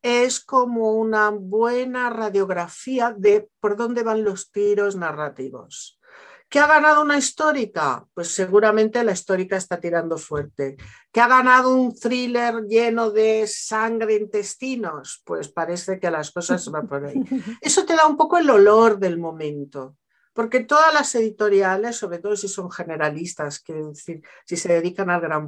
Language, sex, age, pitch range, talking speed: Spanish, female, 50-69, 175-230 Hz, 160 wpm